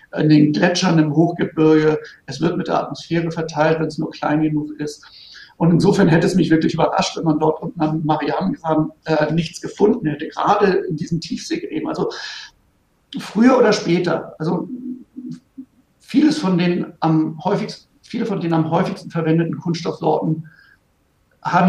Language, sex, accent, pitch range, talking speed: German, male, German, 155-190 Hz, 155 wpm